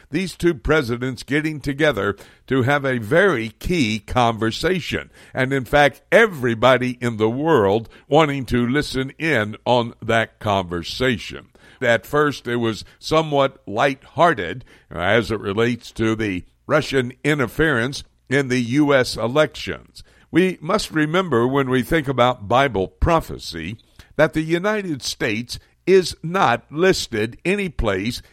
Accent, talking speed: American, 130 wpm